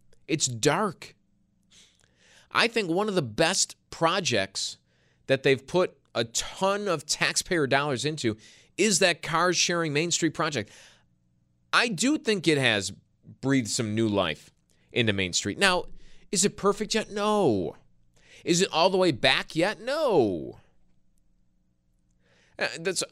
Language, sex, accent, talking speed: English, male, American, 135 wpm